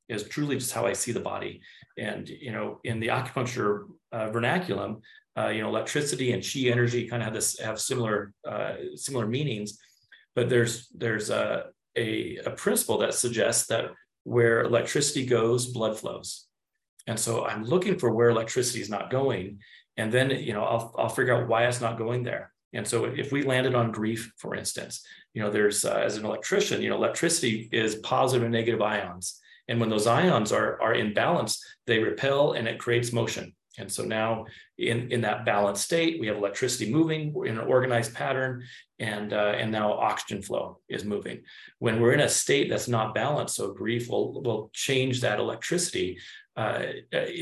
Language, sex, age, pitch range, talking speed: English, male, 40-59, 110-125 Hz, 185 wpm